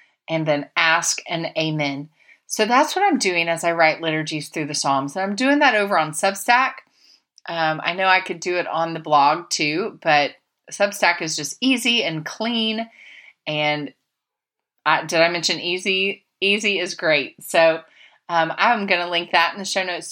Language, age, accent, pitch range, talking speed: English, 30-49, American, 155-195 Hz, 180 wpm